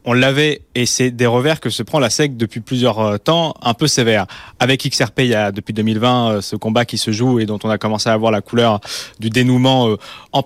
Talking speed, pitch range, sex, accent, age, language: 235 wpm, 110-130 Hz, male, French, 20-39, French